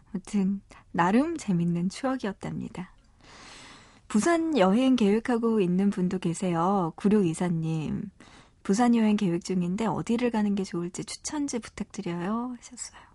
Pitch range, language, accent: 180-240 Hz, Korean, native